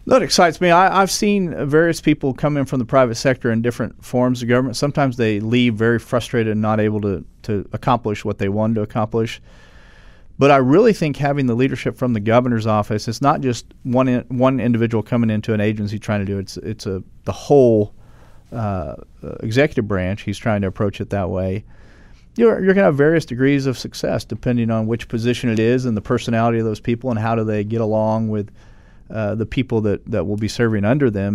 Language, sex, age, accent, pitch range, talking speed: English, male, 40-59, American, 105-125 Hz, 220 wpm